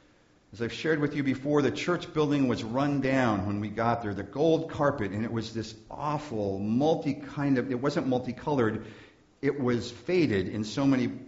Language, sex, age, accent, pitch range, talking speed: English, male, 50-69, American, 110-150 Hz, 190 wpm